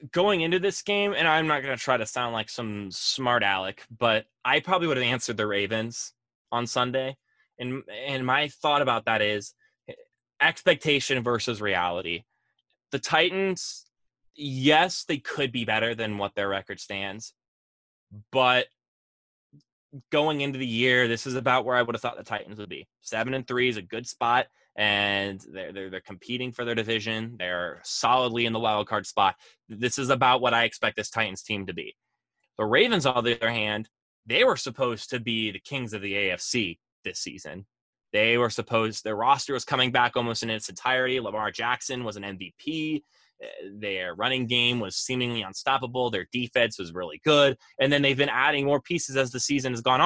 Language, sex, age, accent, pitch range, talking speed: English, male, 20-39, American, 110-135 Hz, 185 wpm